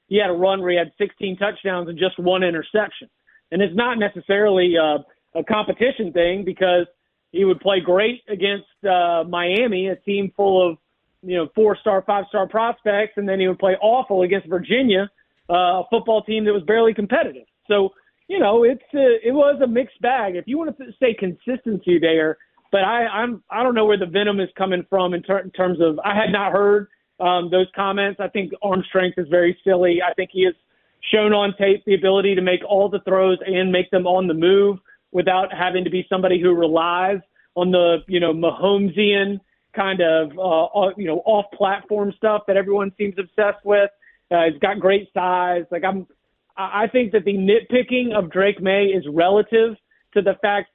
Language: English